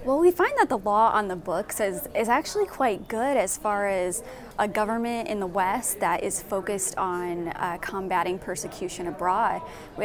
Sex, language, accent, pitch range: female, English, American, 195-245 Hz